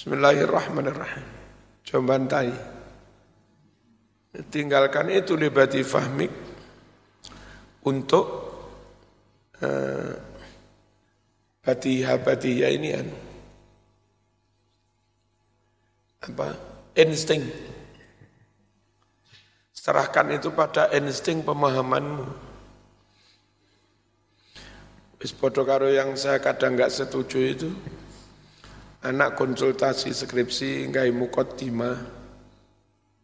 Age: 60-79